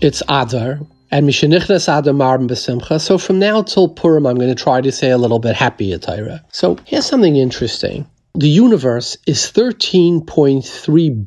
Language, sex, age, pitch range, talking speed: English, male, 40-59, 125-160 Hz, 165 wpm